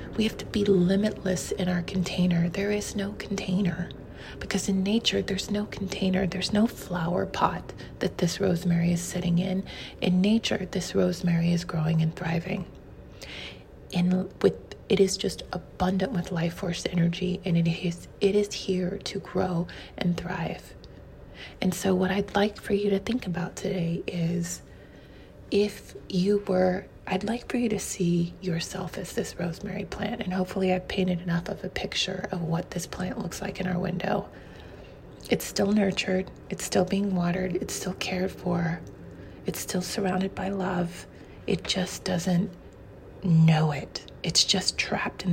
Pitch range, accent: 175-195 Hz, American